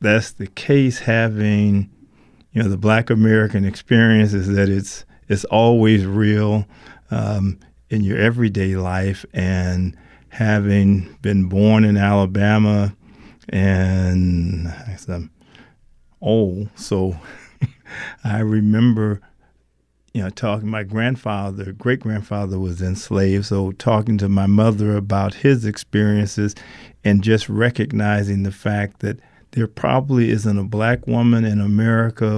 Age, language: 40-59, English